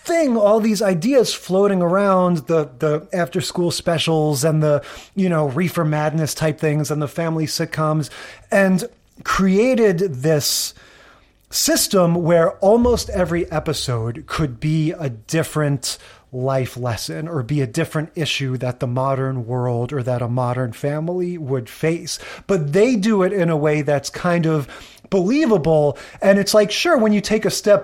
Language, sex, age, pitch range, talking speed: English, male, 30-49, 145-185 Hz, 155 wpm